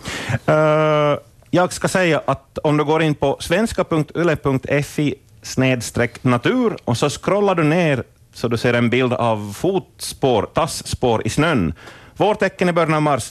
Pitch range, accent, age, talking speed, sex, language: 105-145 Hz, Finnish, 30-49, 135 wpm, male, Swedish